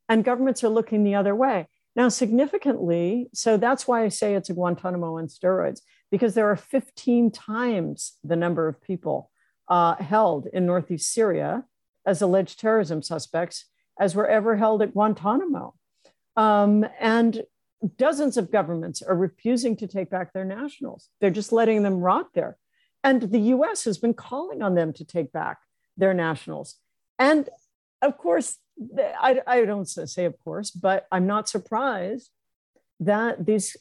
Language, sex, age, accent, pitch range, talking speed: English, female, 60-79, American, 180-235 Hz, 155 wpm